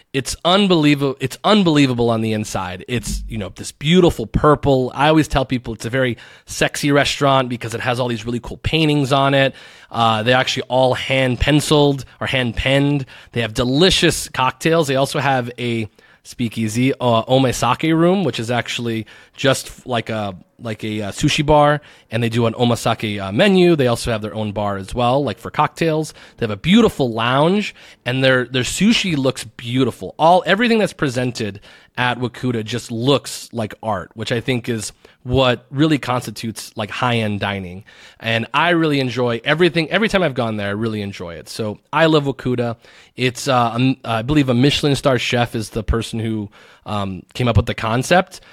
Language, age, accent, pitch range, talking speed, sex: English, 30-49, American, 110-140 Hz, 185 wpm, male